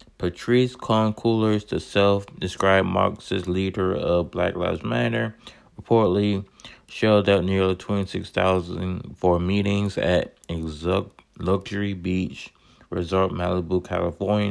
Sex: male